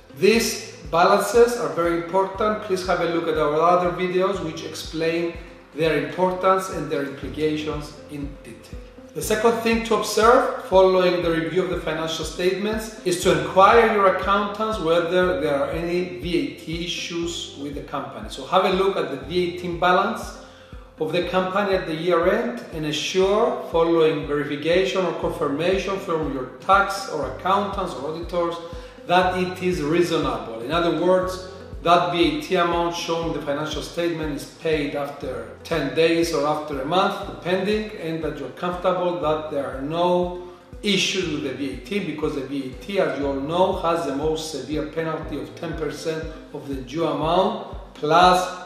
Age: 40-59